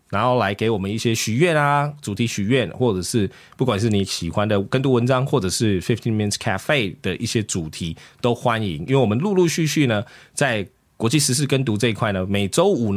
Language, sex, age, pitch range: English, male, 20-39, 100-130 Hz